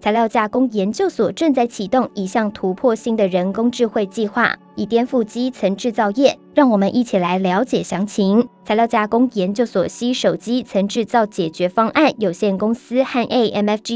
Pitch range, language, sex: 200-255 Hz, Chinese, male